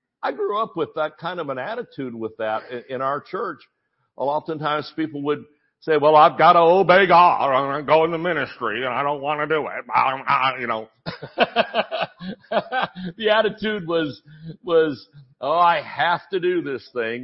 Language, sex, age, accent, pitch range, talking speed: English, male, 60-79, American, 140-180 Hz, 180 wpm